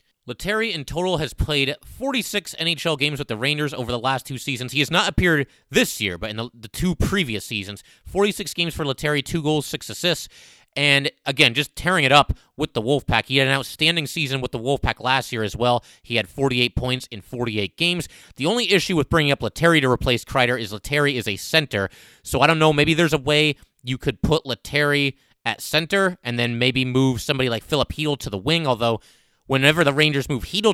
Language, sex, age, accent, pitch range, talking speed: English, male, 30-49, American, 120-155 Hz, 215 wpm